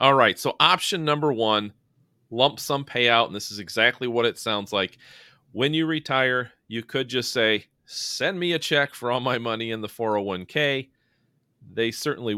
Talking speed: 180 wpm